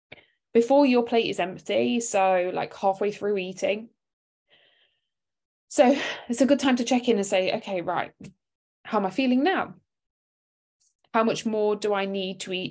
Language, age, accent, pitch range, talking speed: English, 20-39, British, 195-230 Hz, 165 wpm